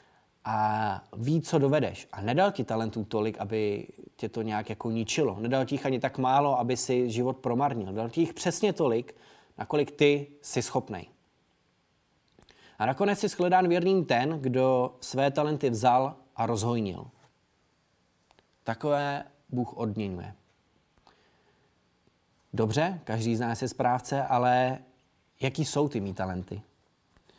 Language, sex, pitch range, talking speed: Czech, male, 115-135 Hz, 130 wpm